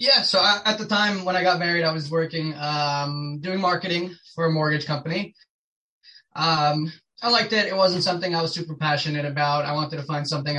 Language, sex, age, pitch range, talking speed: English, male, 20-39, 140-160 Hz, 205 wpm